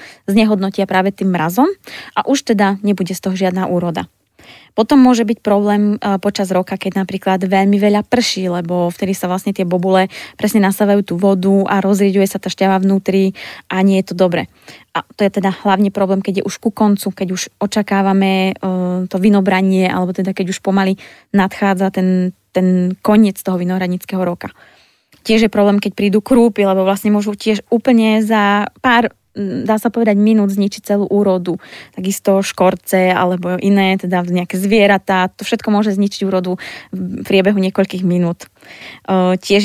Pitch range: 190-220 Hz